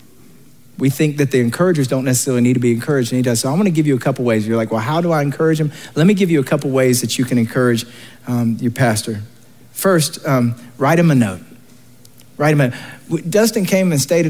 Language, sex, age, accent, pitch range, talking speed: English, male, 40-59, American, 125-160 Hz, 250 wpm